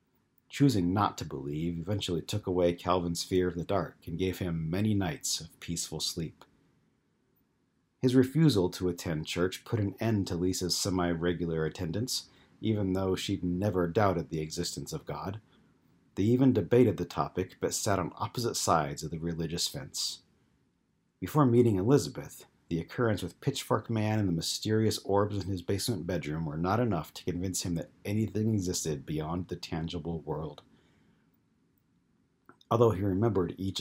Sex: male